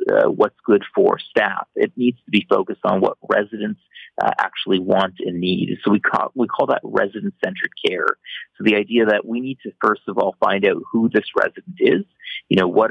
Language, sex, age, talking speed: English, male, 30-49, 210 wpm